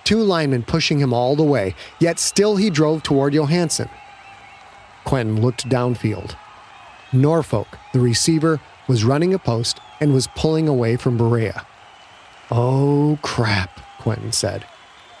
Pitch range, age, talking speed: 120-165 Hz, 40-59, 130 wpm